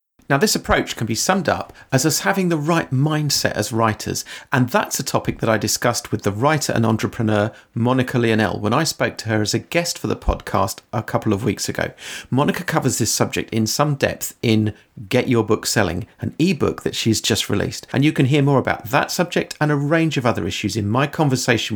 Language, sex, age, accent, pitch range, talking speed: English, male, 40-59, British, 110-145 Hz, 220 wpm